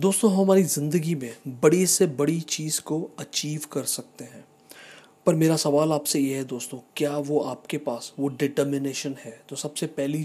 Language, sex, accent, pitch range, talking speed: Hindi, male, native, 140-165 Hz, 175 wpm